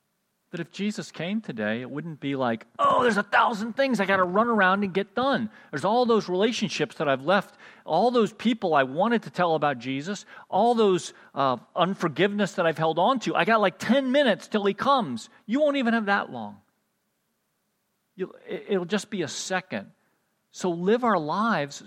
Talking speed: 190 wpm